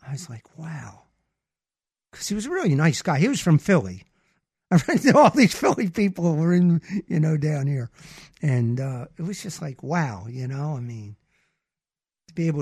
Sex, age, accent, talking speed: male, 50-69, American, 185 wpm